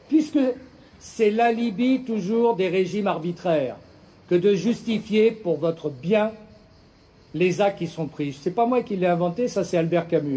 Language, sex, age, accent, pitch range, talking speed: French, male, 50-69, French, 165-230 Hz, 170 wpm